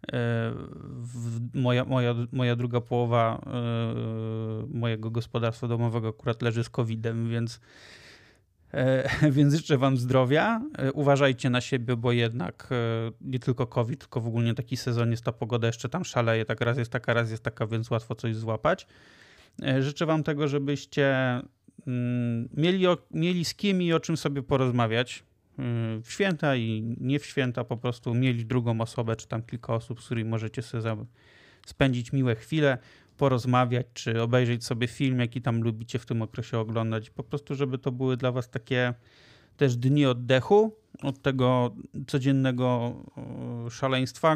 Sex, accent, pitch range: male, native, 115-135 Hz